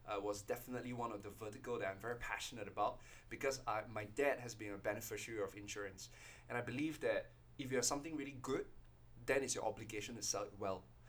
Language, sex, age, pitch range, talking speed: English, male, 20-39, 105-140 Hz, 215 wpm